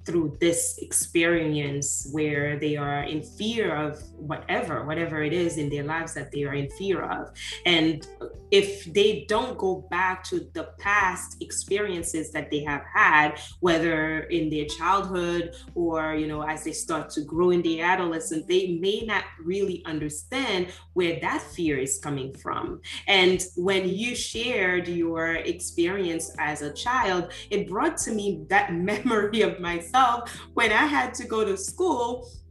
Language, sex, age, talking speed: English, female, 20-39, 160 wpm